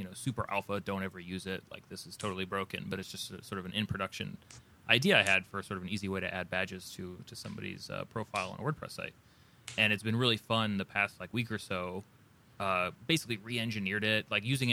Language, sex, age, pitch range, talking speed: English, male, 30-49, 95-115 Hz, 235 wpm